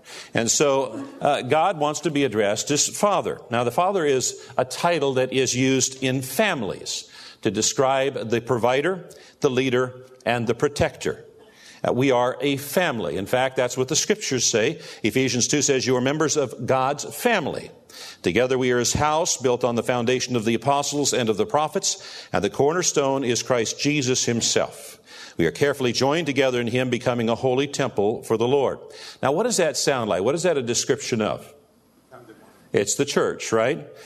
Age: 50-69